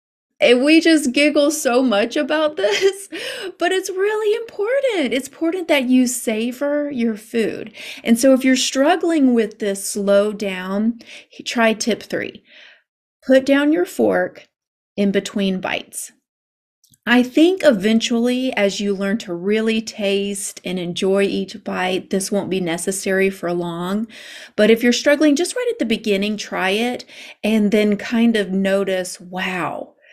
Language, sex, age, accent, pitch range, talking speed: English, female, 30-49, American, 195-285 Hz, 145 wpm